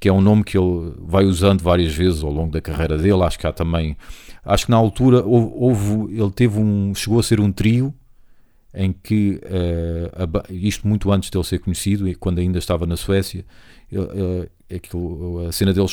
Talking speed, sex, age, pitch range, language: 175 wpm, male, 40-59, 85-100 Hz, Portuguese